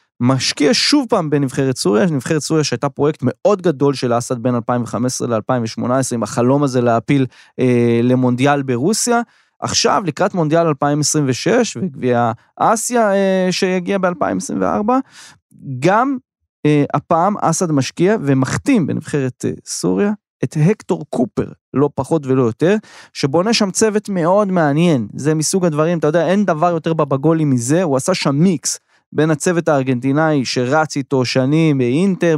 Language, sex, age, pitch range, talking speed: Hebrew, male, 20-39, 130-185 Hz, 135 wpm